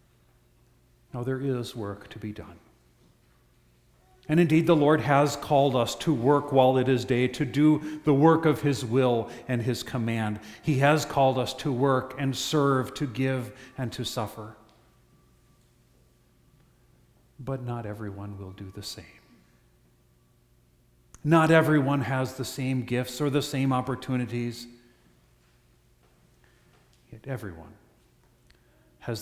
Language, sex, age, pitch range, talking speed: English, male, 40-59, 105-135 Hz, 130 wpm